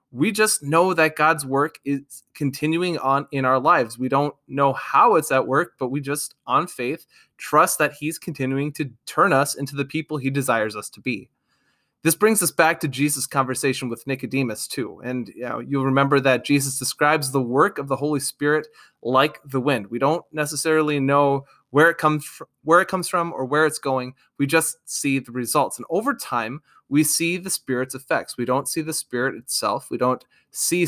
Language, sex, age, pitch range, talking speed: English, male, 20-39, 130-150 Hz, 195 wpm